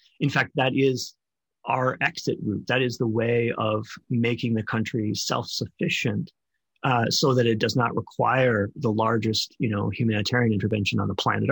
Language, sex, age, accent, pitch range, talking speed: English, male, 30-49, American, 115-140 Hz, 165 wpm